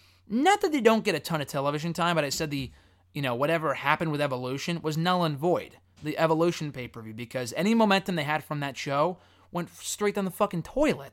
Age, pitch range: 20-39, 125-170 Hz